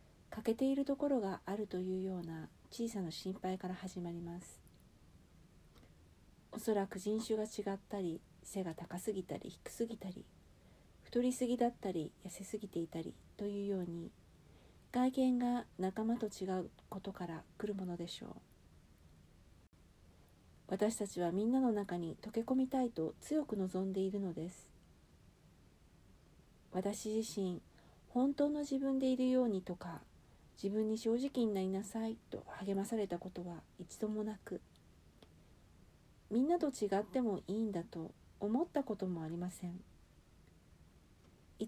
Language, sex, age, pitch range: Japanese, female, 50-69, 175-230 Hz